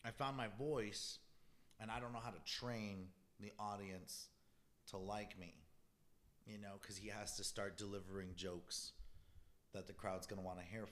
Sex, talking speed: male, 180 wpm